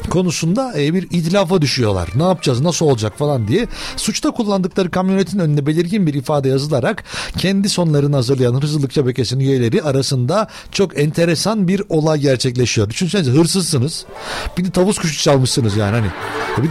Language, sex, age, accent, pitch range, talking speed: Turkish, male, 60-79, native, 150-210 Hz, 145 wpm